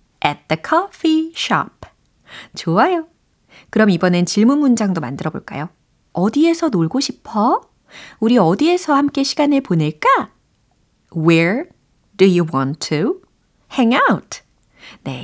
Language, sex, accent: Korean, female, native